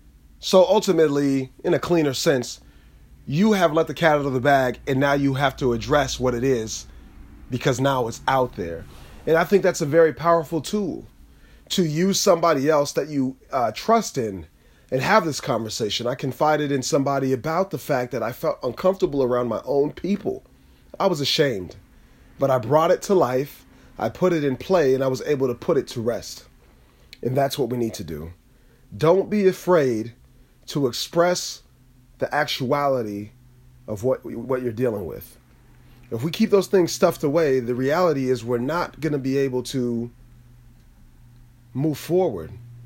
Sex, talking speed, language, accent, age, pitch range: male, 180 wpm, English, American, 30-49, 120-155 Hz